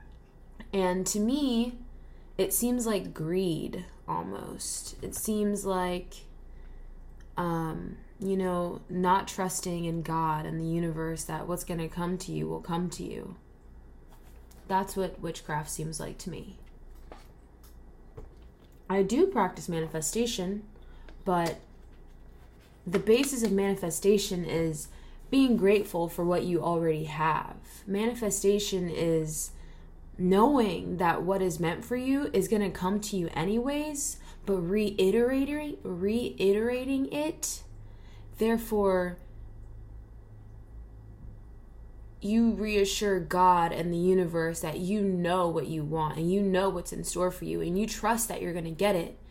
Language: English